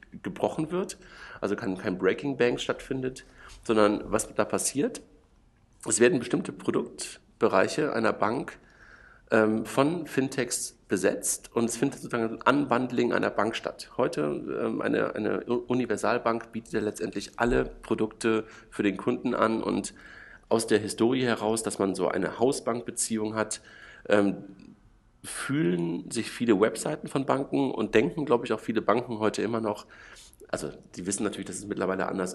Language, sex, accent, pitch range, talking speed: German, male, German, 100-125 Hz, 150 wpm